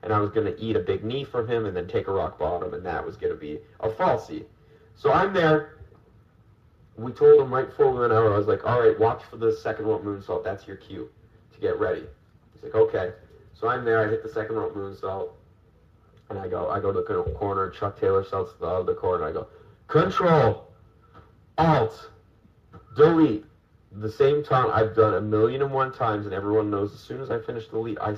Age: 30-49